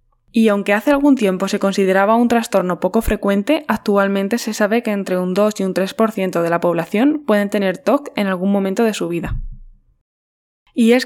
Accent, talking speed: Spanish, 190 wpm